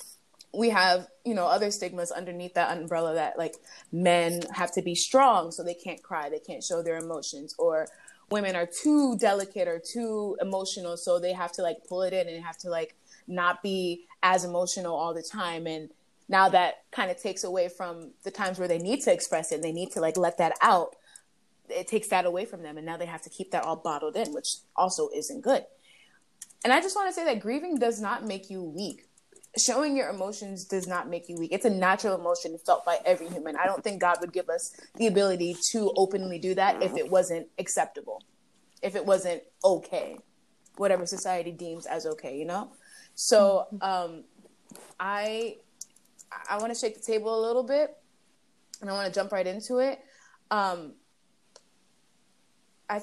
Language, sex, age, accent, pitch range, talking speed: English, female, 20-39, American, 175-225 Hz, 195 wpm